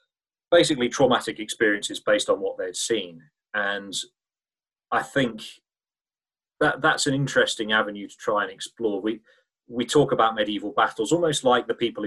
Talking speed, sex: 150 wpm, male